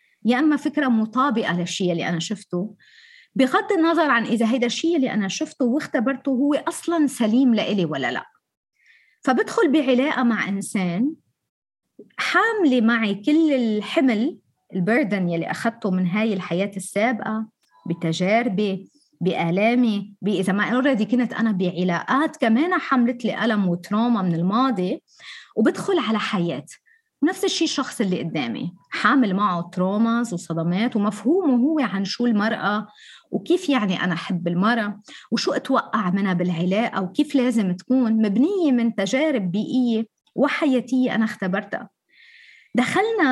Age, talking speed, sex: 20-39, 125 wpm, female